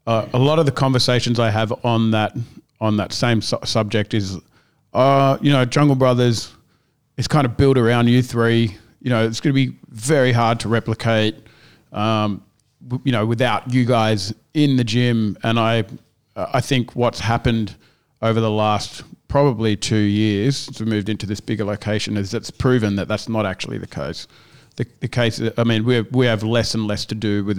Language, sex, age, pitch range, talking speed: English, male, 40-59, 110-125 Hz, 200 wpm